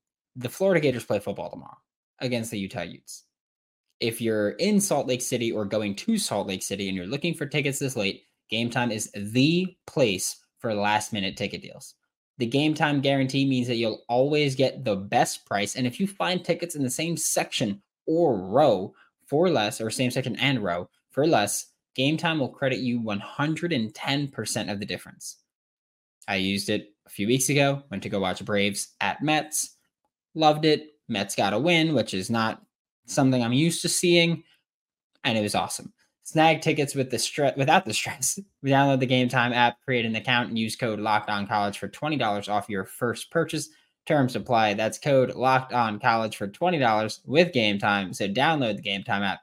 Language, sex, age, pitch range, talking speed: English, male, 10-29, 105-145 Hz, 195 wpm